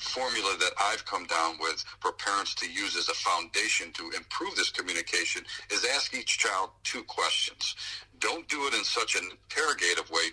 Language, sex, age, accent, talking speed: English, male, 50-69, American, 180 wpm